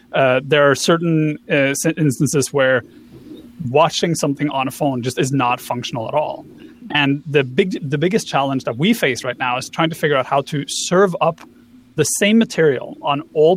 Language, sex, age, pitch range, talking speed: English, male, 30-49, 130-170 Hz, 190 wpm